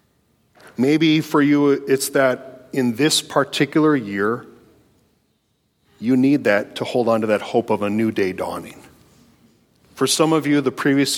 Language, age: English, 40-59